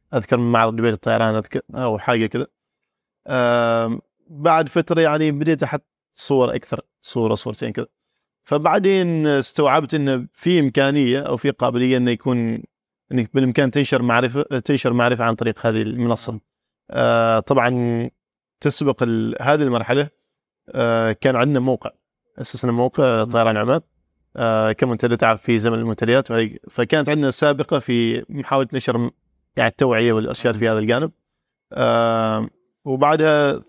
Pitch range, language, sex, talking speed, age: 115-145 Hz, Arabic, male, 120 wpm, 30-49